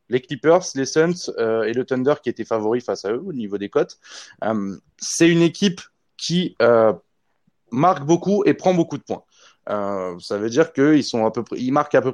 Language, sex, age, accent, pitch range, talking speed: French, male, 20-39, French, 115-155 Hz, 220 wpm